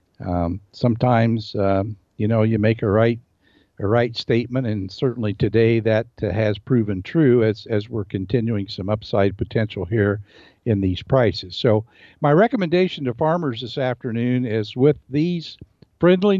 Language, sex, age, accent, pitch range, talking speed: English, male, 60-79, American, 100-130 Hz, 155 wpm